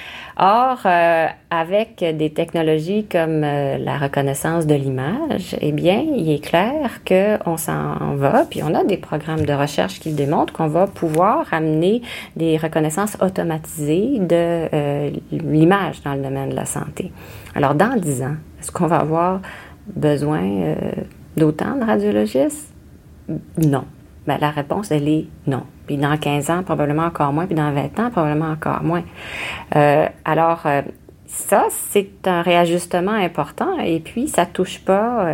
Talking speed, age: 150 wpm, 30-49